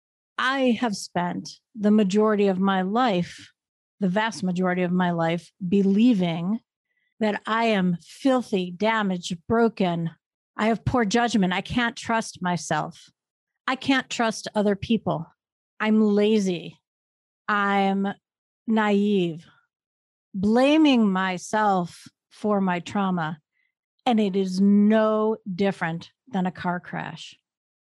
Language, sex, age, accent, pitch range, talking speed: English, female, 50-69, American, 180-225 Hz, 110 wpm